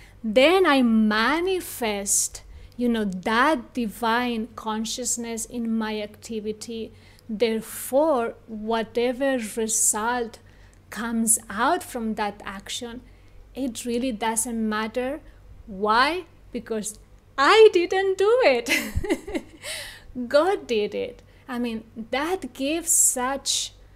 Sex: female